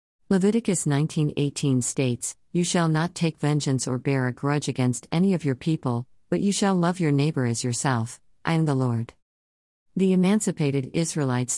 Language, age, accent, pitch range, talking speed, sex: English, 50-69, American, 130-175 Hz, 170 wpm, female